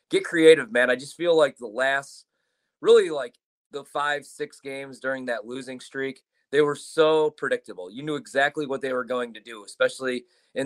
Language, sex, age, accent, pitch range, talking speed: English, male, 30-49, American, 125-155 Hz, 190 wpm